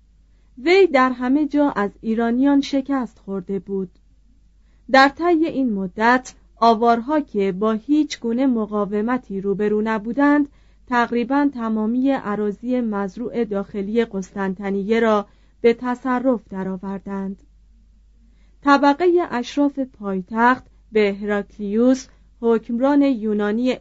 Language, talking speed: Persian, 100 wpm